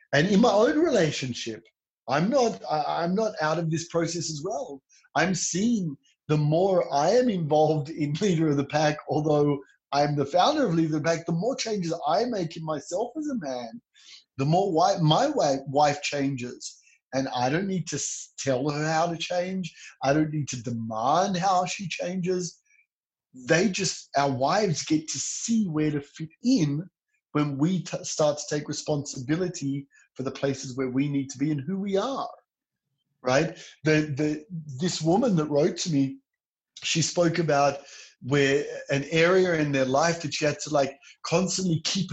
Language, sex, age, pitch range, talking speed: English, male, 30-49, 140-175 Hz, 180 wpm